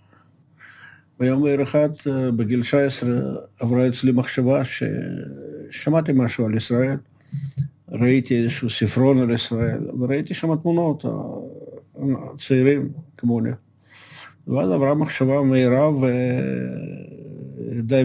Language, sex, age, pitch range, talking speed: Hebrew, male, 50-69, 115-145 Hz, 90 wpm